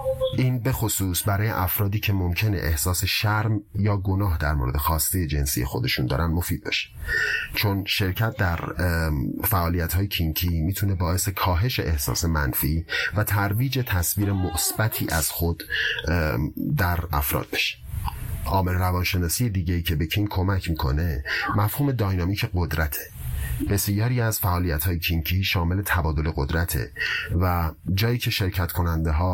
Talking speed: 130 wpm